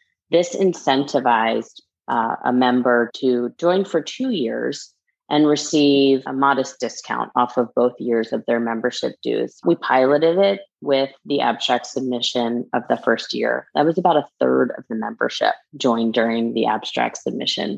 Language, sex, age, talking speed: English, female, 30-49, 160 wpm